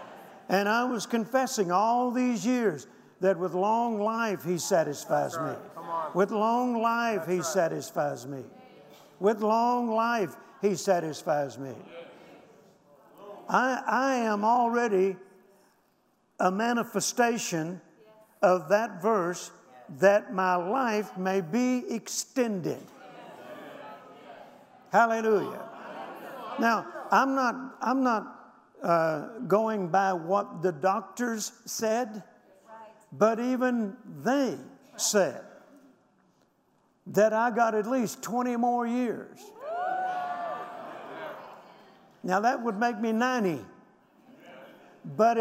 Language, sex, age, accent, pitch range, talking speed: English, male, 60-79, American, 195-245 Hz, 100 wpm